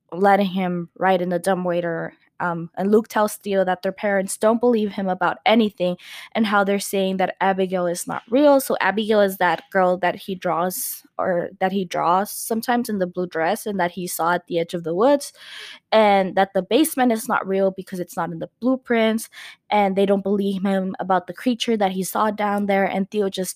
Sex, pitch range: female, 185-220 Hz